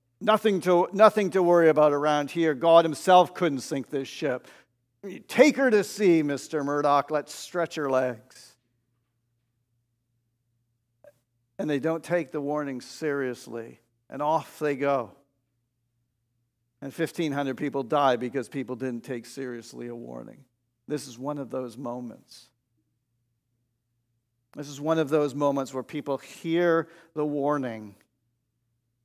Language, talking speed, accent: English, 130 wpm, American